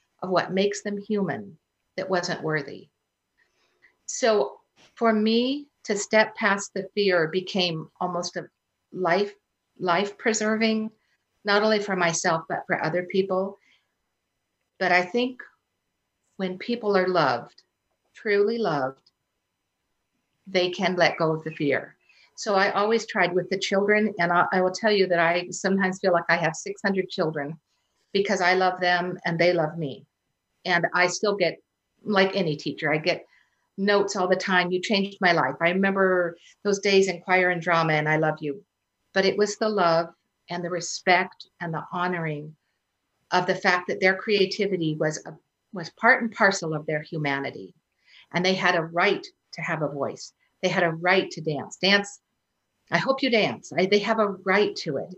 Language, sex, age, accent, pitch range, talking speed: English, female, 50-69, American, 170-200 Hz, 170 wpm